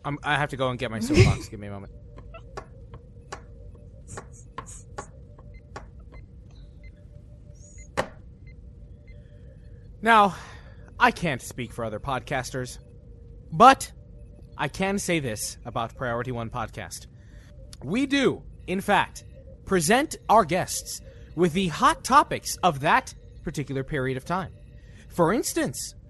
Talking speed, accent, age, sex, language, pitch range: 110 wpm, American, 20-39, male, English, 120-180 Hz